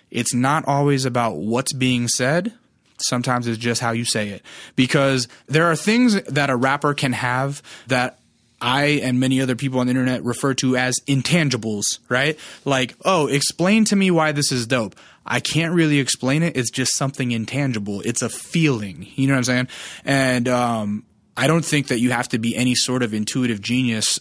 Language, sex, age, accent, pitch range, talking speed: English, male, 20-39, American, 120-145 Hz, 195 wpm